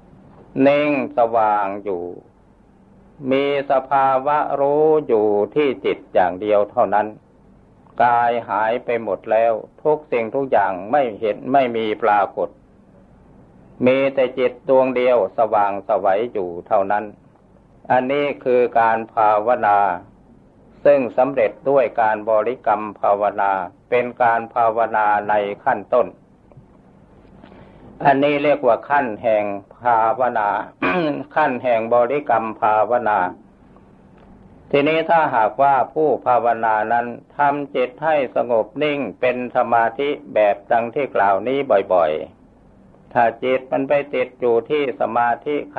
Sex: male